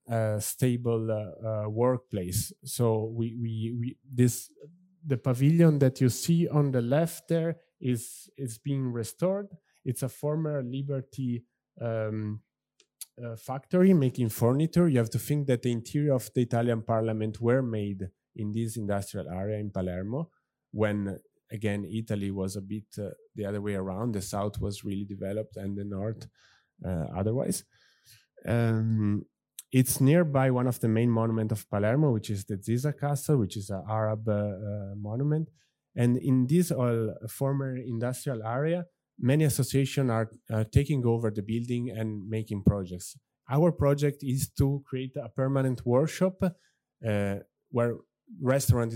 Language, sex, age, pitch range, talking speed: French, male, 20-39, 110-140 Hz, 150 wpm